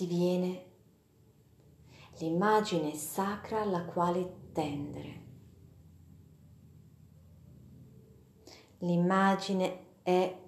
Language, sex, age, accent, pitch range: Italian, female, 30-49, native, 150-180 Hz